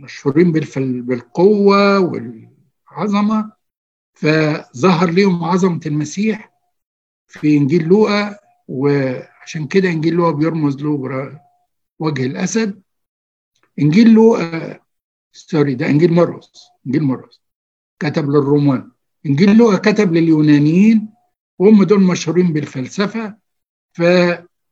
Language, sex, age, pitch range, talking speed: Arabic, male, 60-79, 145-200 Hz, 95 wpm